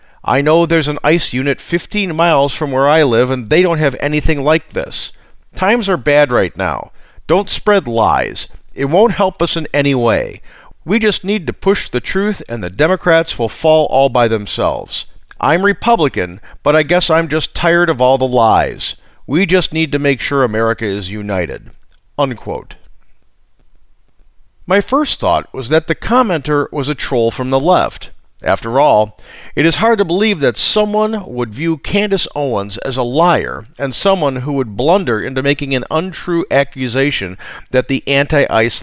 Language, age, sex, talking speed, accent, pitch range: English, 50-69, male, 175 wpm, American, 130-175 Hz